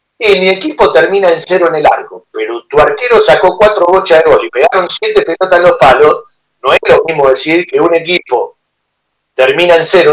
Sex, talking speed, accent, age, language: male, 205 wpm, Argentinian, 40-59, Spanish